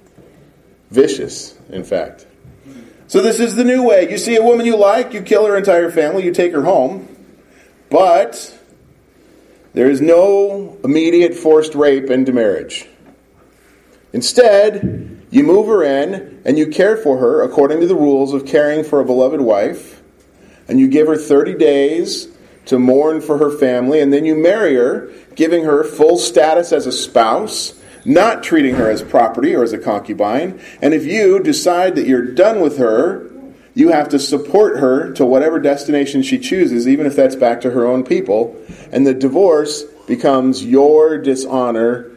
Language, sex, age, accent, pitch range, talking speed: English, male, 40-59, American, 130-200 Hz, 170 wpm